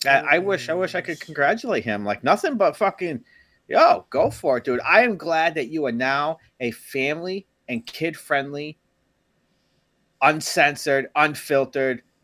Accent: American